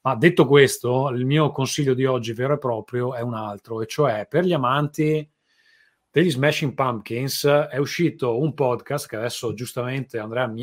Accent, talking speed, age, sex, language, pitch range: native, 175 wpm, 30-49, male, Italian, 115-145 Hz